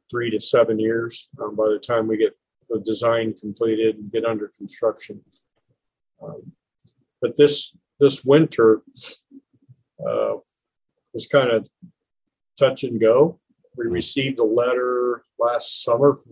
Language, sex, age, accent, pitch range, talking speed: English, male, 50-69, American, 110-130 Hz, 130 wpm